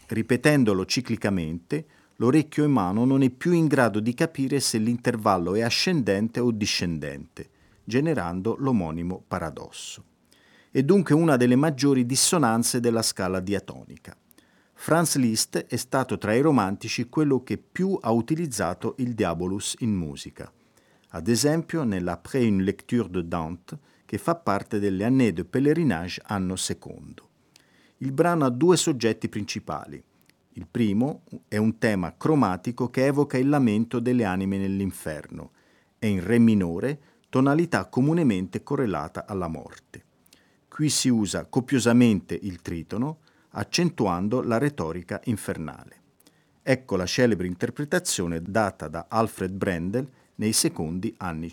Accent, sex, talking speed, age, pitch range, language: native, male, 130 wpm, 50-69, 95-135 Hz, Italian